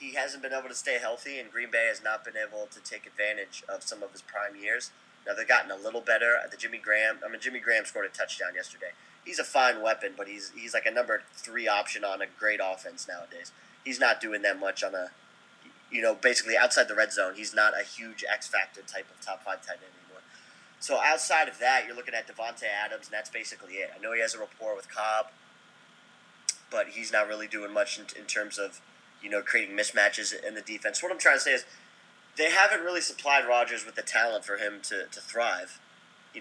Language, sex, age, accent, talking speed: English, male, 30-49, American, 230 wpm